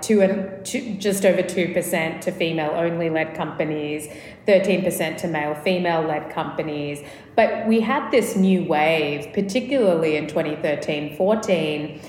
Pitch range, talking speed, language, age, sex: 155-190 Hz, 105 wpm, English, 30-49, female